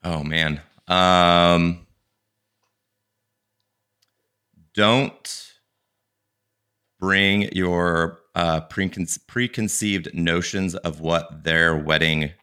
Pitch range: 75-90 Hz